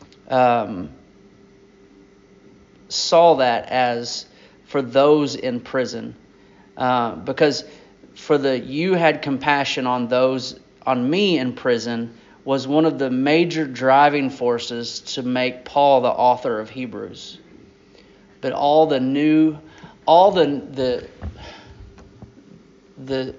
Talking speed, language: 110 wpm, English